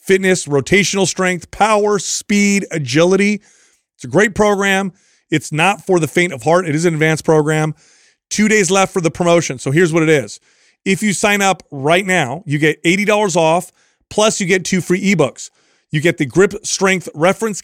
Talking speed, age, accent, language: 185 wpm, 30-49, American, English